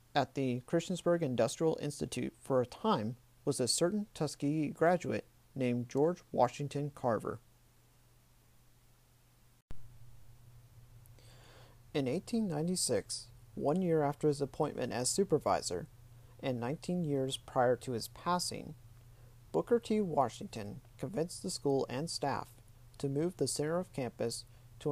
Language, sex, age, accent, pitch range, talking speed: English, male, 40-59, American, 120-155 Hz, 115 wpm